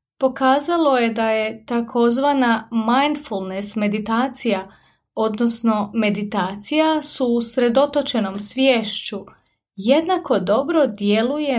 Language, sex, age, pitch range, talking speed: Croatian, female, 30-49, 205-275 Hz, 80 wpm